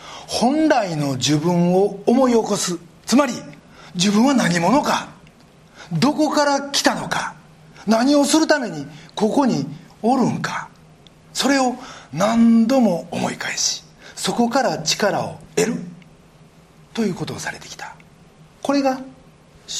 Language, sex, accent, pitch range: Japanese, male, native, 150-225 Hz